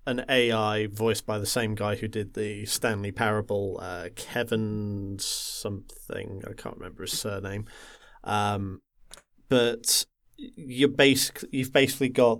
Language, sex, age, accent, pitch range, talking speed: English, male, 30-49, British, 105-120 Hz, 125 wpm